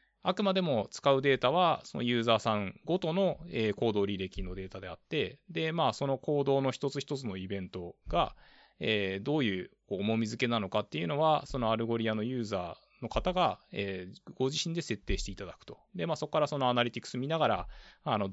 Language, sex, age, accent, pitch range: Japanese, male, 20-39, native, 105-160 Hz